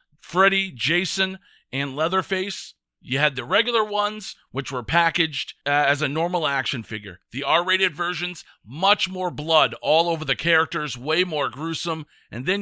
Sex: male